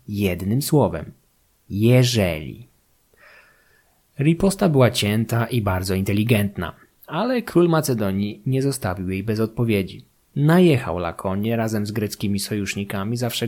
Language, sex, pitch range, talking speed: Polish, male, 105-140 Hz, 105 wpm